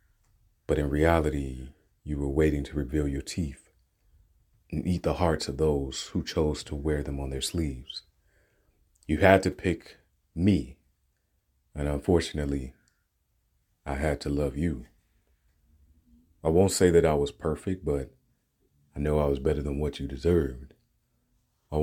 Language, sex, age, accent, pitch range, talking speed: English, male, 30-49, American, 70-85 Hz, 150 wpm